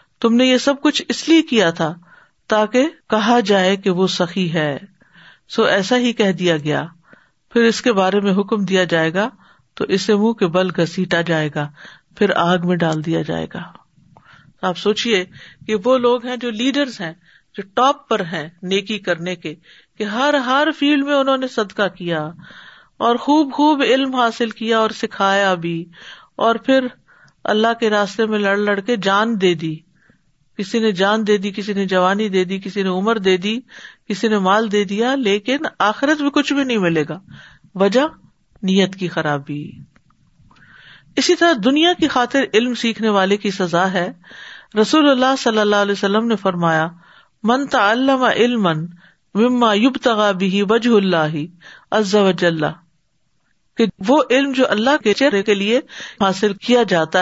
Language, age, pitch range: Urdu, 50-69, 185-240 Hz